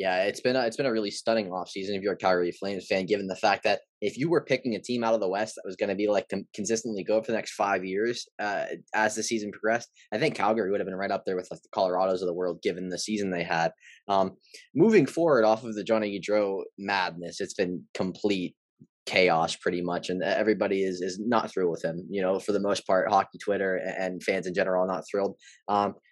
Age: 20-39